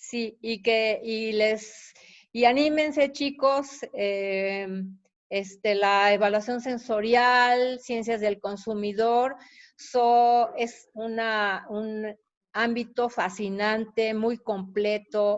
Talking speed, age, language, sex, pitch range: 95 wpm, 40-59, Spanish, female, 205-240 Hz